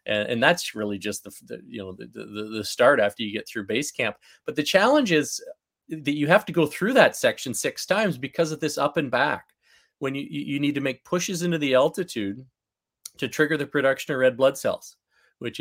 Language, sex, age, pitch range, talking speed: English, male, 30-49, 105-145 Hz, 220 wpm